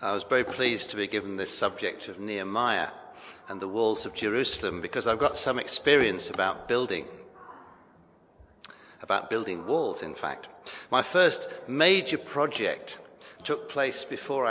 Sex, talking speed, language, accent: male, 145 wpm, English, British